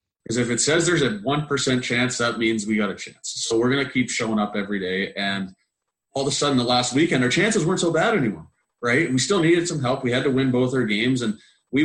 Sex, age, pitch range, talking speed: male, 30-49, 105-125 Hz, 265 wpm